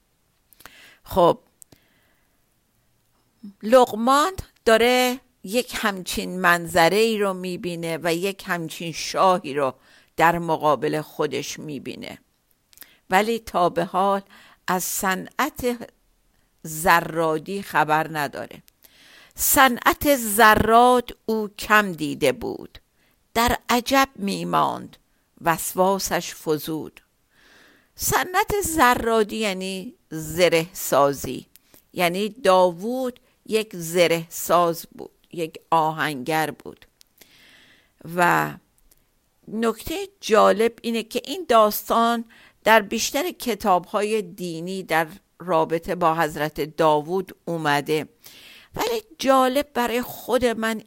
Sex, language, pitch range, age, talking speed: female, Persian, 170-235 Hz, 50-69, 85 wpm